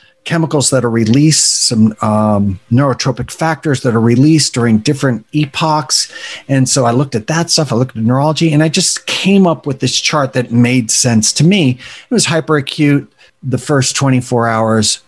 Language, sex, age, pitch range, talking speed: English, male, 40-59, 120-150 Hz, 180 wpm